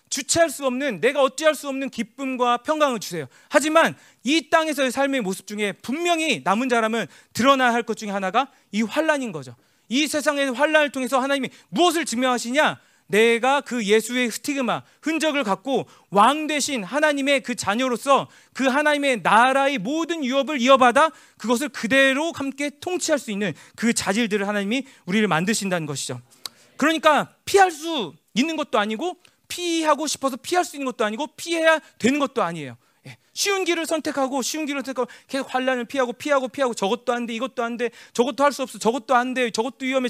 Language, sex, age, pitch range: Korean, male, 40-59, 205-285 Hz